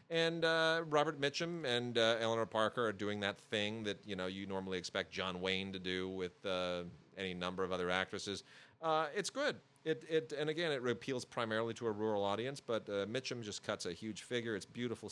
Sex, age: male, 40-59